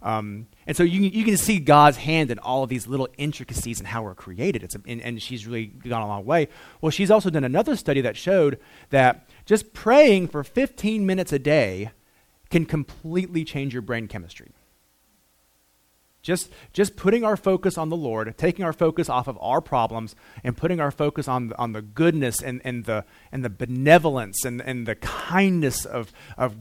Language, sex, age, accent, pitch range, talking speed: English, male, 30-49, American, 110-165 Hz, 195 wpm